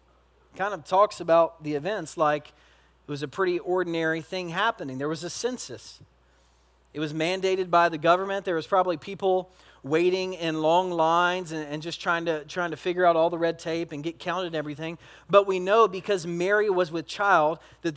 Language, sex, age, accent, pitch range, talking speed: English, male, 40-59, American, 140-195 Hz, 195 wpm